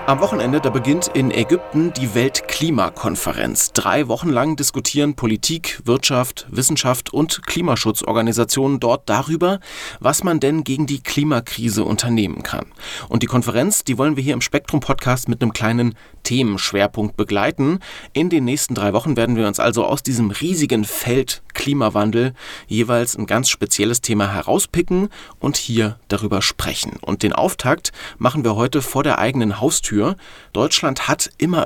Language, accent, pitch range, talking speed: German, German, 110-140 Hz, 150 wpm